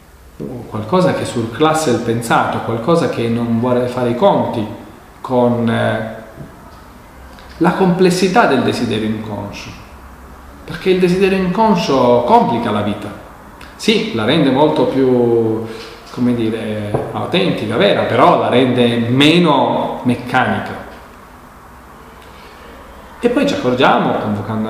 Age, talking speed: 40-59, 105 wpm